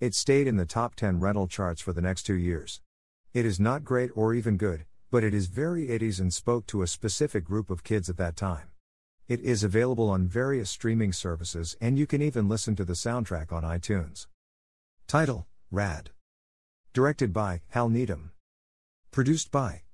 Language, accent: English, American